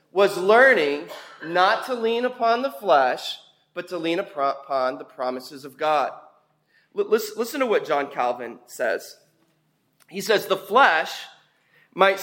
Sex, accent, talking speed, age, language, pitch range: male, American, 130 wpm, 30-49, English, 175-255 Hz